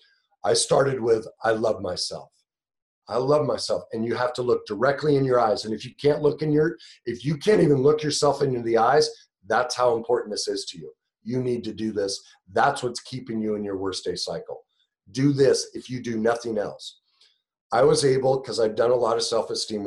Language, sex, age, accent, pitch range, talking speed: English, male, 40-59, American, 115-160 Hz, 220 wpm